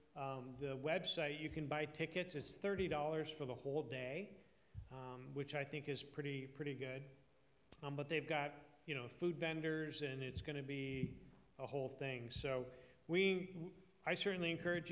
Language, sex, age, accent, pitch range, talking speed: English, male, 40-59, American, 140-160 Hz, 170 wpm